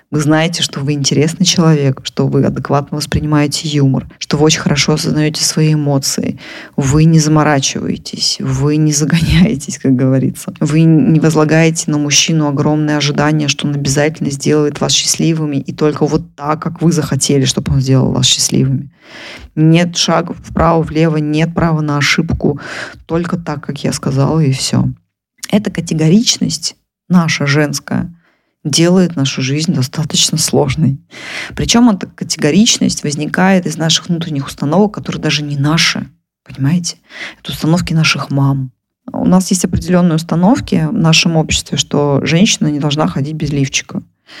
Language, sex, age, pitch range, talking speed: Russian, female, 20-39, 145-170 Hz, 145 wpm